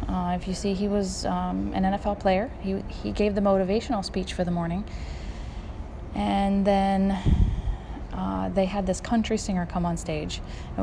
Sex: female